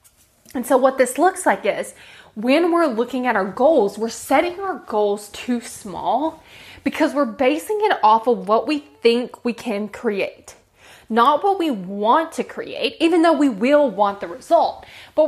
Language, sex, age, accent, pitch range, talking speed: English, female, 20-39, American, 225-310 Hz, 175 wpm